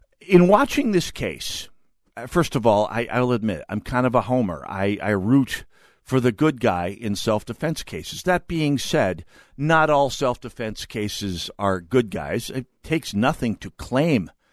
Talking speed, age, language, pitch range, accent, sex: 165 wpm, 50-69, English, 105-165 Hz, American, male